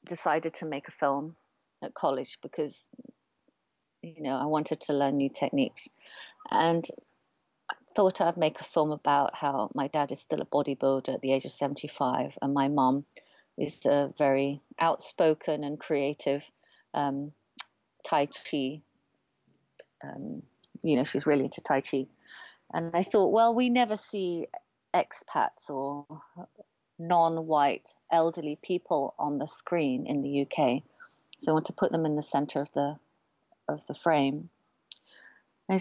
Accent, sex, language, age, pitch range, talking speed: British, female, English, 40-59, 145-170 Hz, 150 wpm